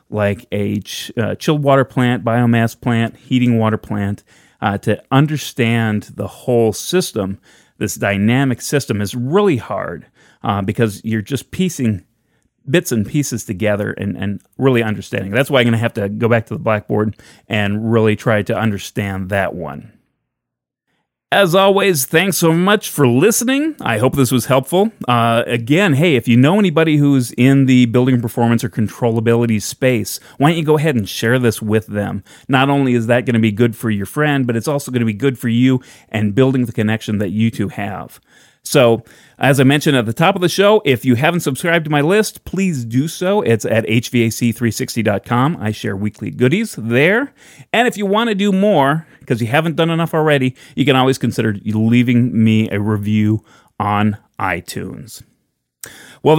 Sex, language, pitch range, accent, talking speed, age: male, English, 110-155 Hz, American, 185 wpm, 30-49